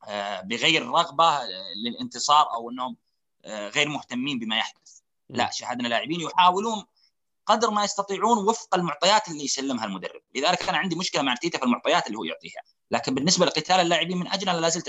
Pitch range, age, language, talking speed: 135-195 Hz, 30-49, Arabic, 160 wpm